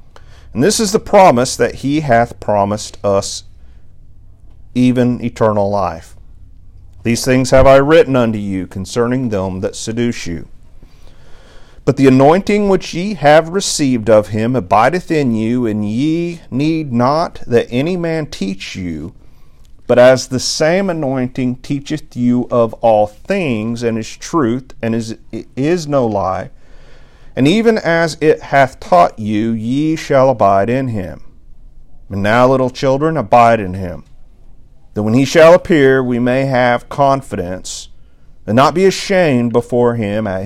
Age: 40-59